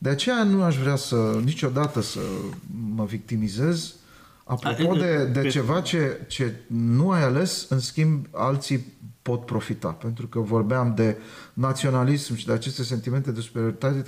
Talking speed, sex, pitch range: 150 wpm, male, 110-155 Hz